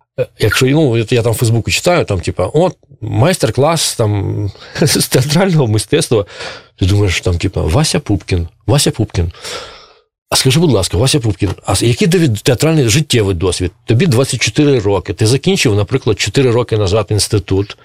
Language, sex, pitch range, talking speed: Russian, male, 100-135 Hz, 150 wpm